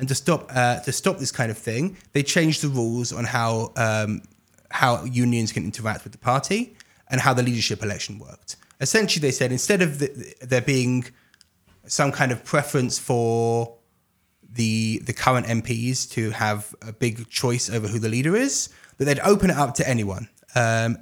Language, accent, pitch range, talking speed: English, British, 110-140 Hz, 190 wpm